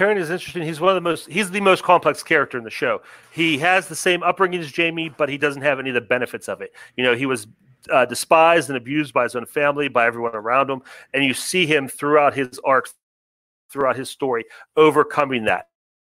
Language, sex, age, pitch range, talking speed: English, male, 40-59, 115-160 Hz, 225 wpm